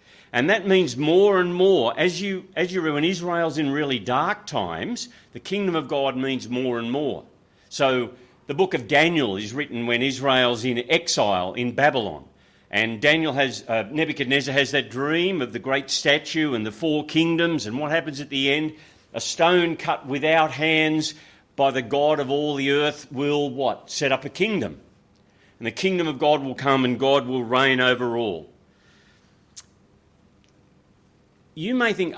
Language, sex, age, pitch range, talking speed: English, male, 50-69, 125-160 Hz, 175 wpm